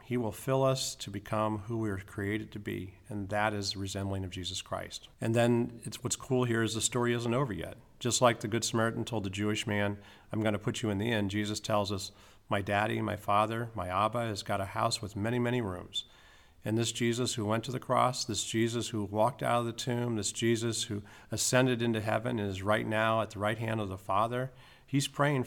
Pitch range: 100-115 Hz